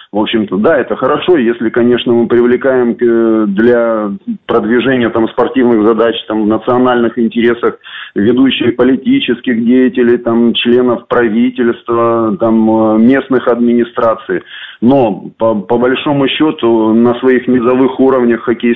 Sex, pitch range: male, 115-130 Hz